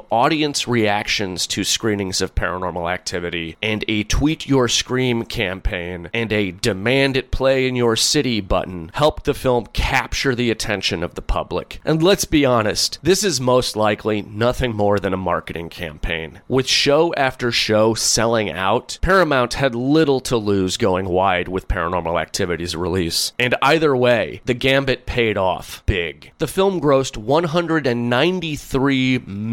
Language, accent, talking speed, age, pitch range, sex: English, American, 150 wpm, 30-49, 105-140 Hz, male